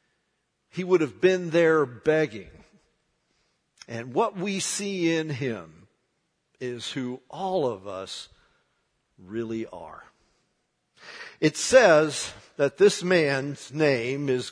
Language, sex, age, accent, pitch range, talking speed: English, male, 50-69, American, 140-195 Hz, 110 wpm